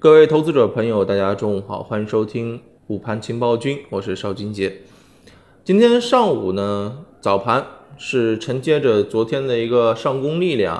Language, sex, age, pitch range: Chinese, male, 20-39, 105-130 Hz